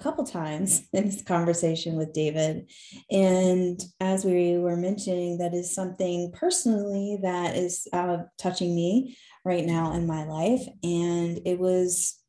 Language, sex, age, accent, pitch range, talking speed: English, female, 20-39, American, 170-195 Hz, 140 wpm